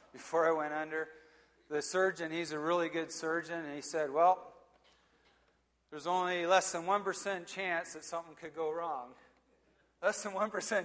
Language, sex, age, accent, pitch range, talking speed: English, male, 40-59, American, 145-170 Hz, 155 wpm